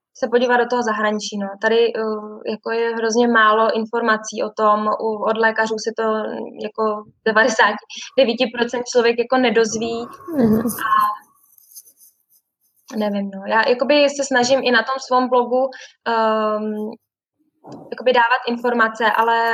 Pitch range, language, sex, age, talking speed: 215-240 Hz, Czech, female, 10-29, 130 wpm